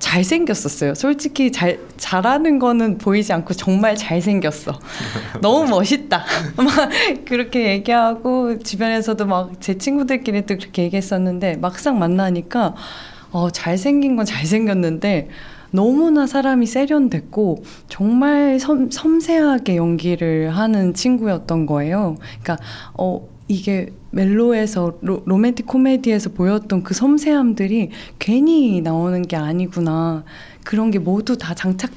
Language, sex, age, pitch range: Japanese, female, 20-39, 175-235 Hz